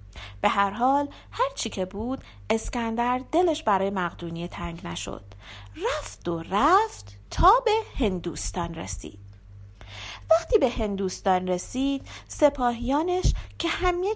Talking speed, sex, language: 115 wpm, female, Persian